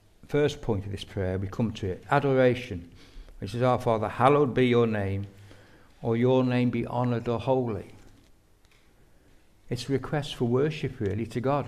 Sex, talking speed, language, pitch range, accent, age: male, 170 wpm, English, 105-125 Hz, British, 60-79